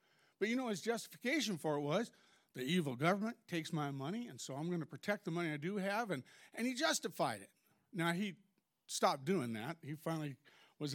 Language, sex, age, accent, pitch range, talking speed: English, male, 50-69, American, 145-195 Hz, 210 wpm